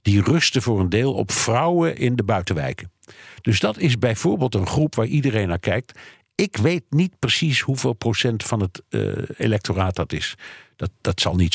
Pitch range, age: 95-125 Hz, 60-79